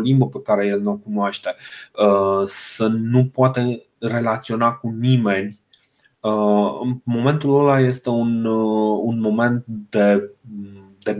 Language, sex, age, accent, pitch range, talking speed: Romanian, male, 30-49, native, 105-120 Hz, 120 wpm